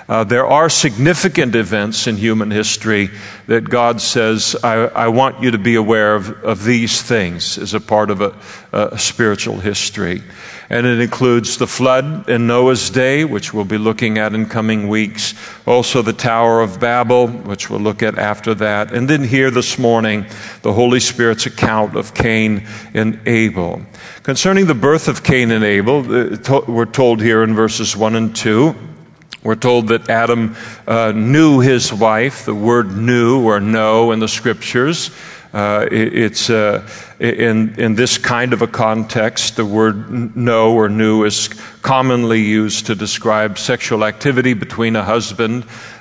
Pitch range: 110-120 Hz